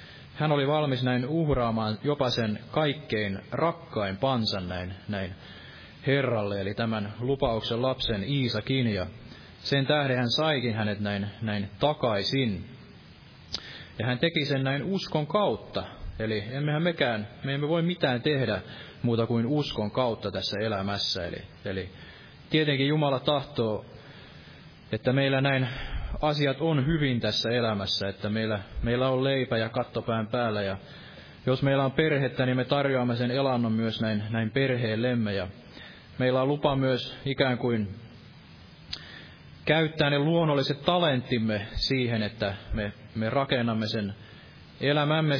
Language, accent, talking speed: Finnish, native, 135 wpm